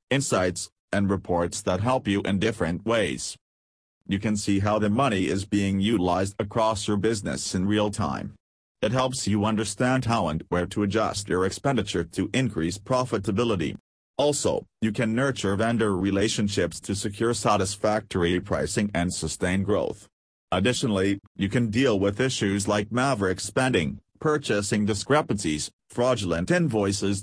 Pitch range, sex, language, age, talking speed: 95-115 Hz, male, English, 40-59, 140 wpm